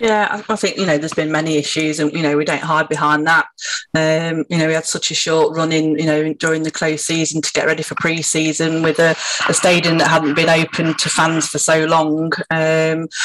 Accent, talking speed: British, 230 wpm